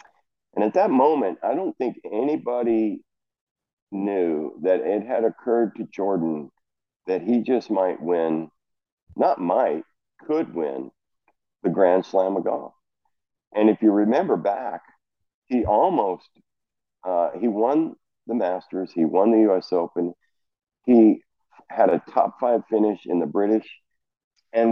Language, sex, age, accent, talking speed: English, male, 50-69, American, 135 wpm